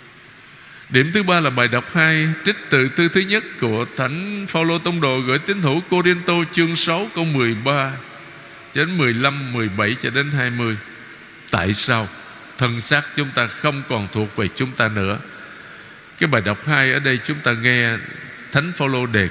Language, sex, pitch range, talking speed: Vietnamese, male, 110-145 Hz, 175 wpm